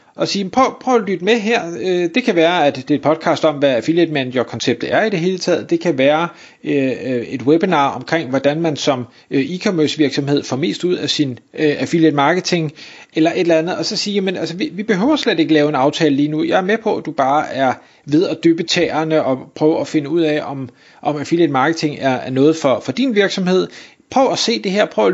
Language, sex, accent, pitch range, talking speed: Danish, male, native, 150-205 Hz, 230 wpm